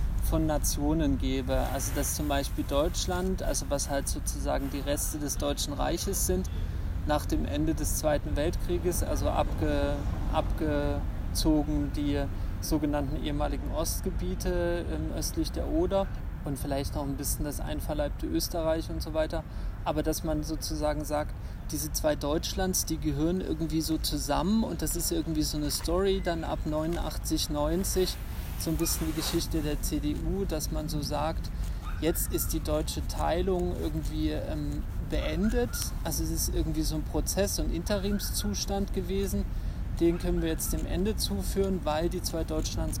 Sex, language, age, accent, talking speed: male, German, 30-49, German, 150 wpm